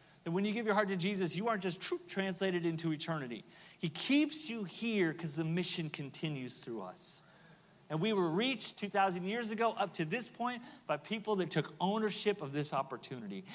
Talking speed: 190 wpm